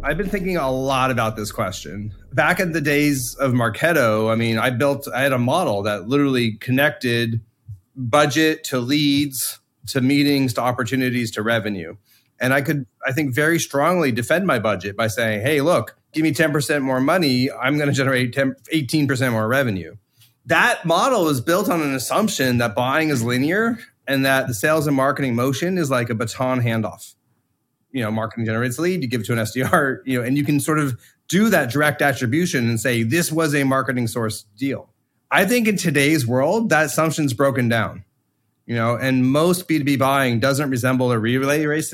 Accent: American